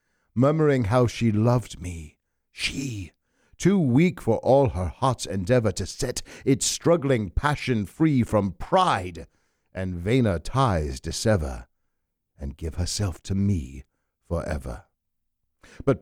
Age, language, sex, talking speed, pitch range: 60-79, English, male, 120 wpm, 80-130 Hz